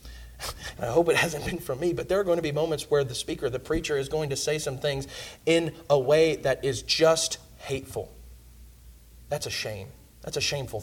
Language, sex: English, male